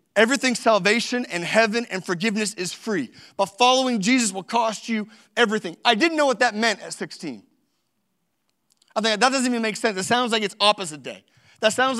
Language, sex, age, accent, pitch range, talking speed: English, male, 40-59, American, 210-255 Hz, 190 wpm